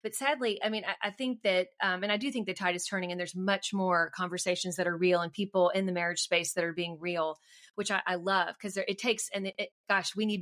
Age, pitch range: 30-49, 180-220 Hz